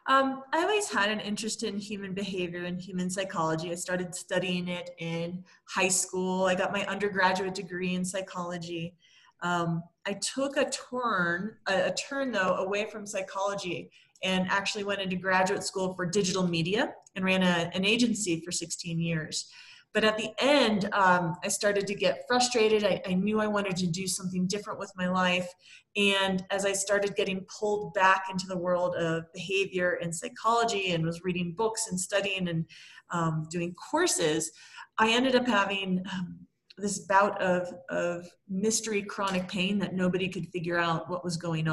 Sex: female